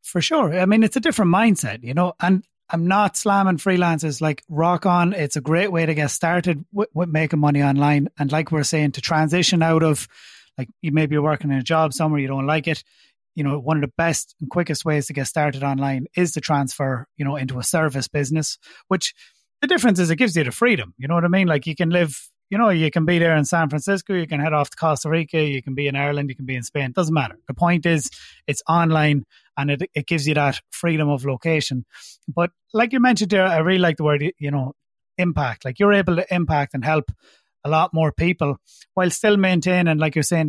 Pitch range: 145-175 Hz